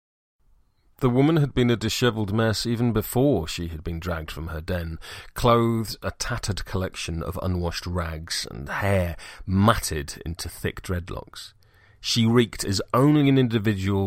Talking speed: 150 wpm